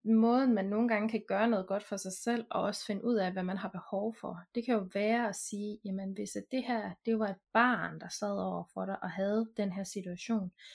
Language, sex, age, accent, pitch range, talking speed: Danish, female, 20-39, native, 200-235 Hz, 250 wpm